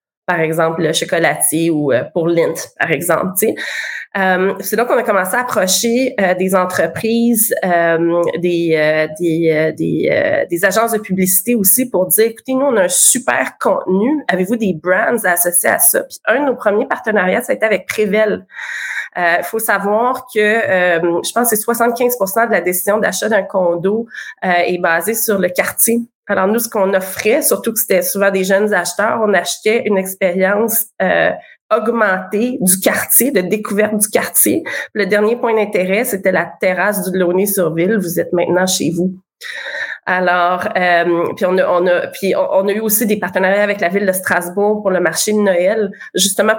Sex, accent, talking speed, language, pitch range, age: female, Canadian, 185 wpm, French, 180-220 Hz, 20-39